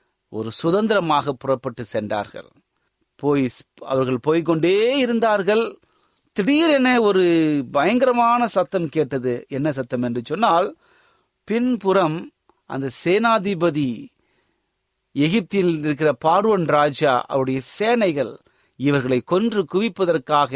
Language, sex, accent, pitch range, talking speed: Tamil, male, native, 135-200 Hz, 85 wpm